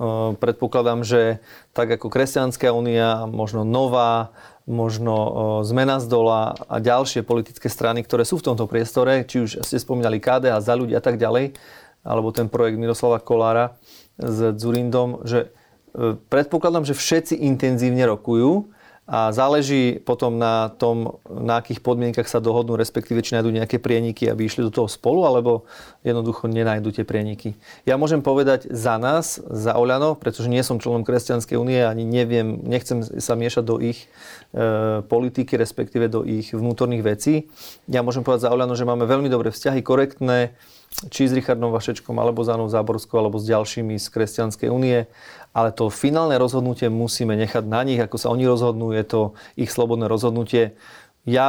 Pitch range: 115-125 Hz